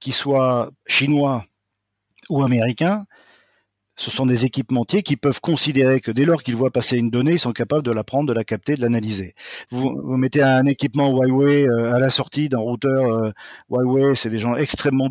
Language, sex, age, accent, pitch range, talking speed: French, male, 40-59, French, 120-145 Hz, 185 wpm